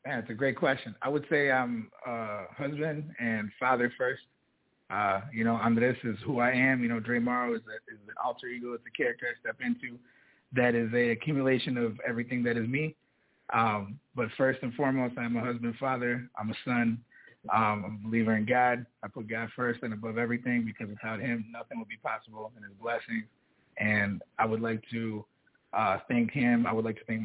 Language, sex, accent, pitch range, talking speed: English, male, American, 110-125 Hz, 210 wpm